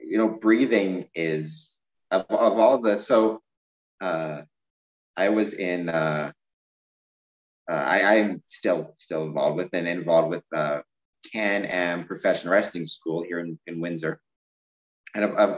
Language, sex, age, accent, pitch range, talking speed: English, male, 30-49, American, 80-100 Hz, 140 wpm